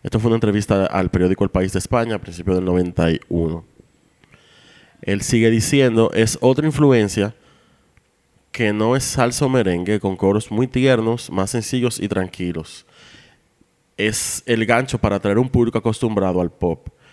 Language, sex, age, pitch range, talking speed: Spanish, male, 30-49, 95-120 Hz, 155 wpm